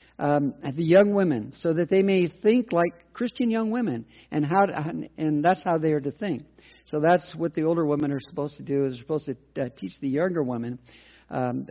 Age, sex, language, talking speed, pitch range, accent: 50-69, male, English, 210 wpm, 145-190 Hz, American